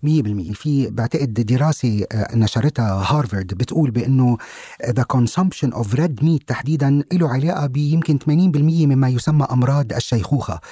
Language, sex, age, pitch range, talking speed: Arabic, male, 40-59, 120-155 Hz, 125 wpm